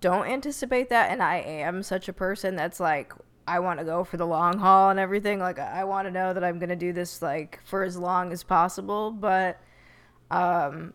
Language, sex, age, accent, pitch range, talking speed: English, female, 20-39, American, 165-185 Hz, 215 wpm